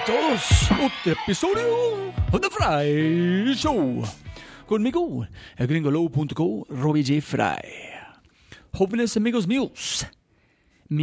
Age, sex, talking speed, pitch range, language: 40-59, male, 90 wpm, 130-165 Hz, Spanish